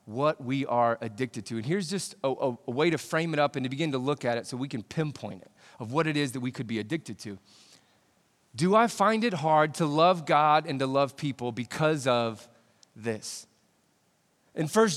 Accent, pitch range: American, 125-170 Hz